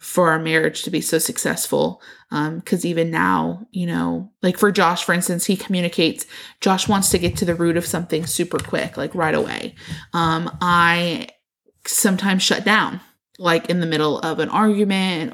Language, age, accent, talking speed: English, 20-39, American, 180 wpm